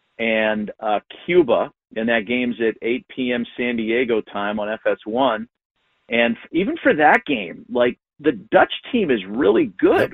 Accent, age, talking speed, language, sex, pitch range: American, 40-59, 155 wpm, English, male, 110-145 Hz